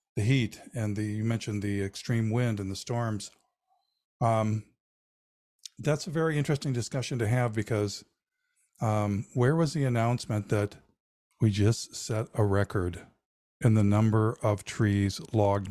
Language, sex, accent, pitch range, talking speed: English, male, American, 110-135 Hz, 145 wpm